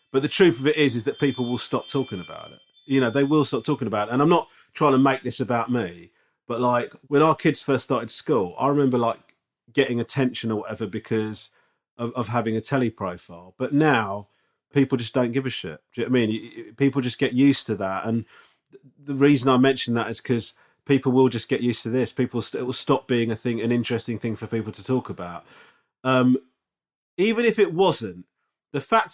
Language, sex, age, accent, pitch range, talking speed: English, male, 30-49, British, 110-145 Hz, 225 wpm